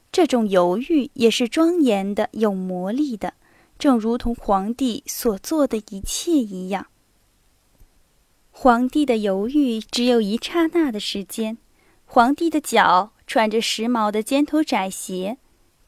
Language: Chinese